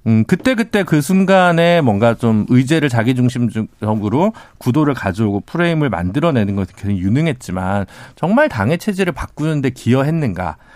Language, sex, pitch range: Korean, male, 105-170 Hz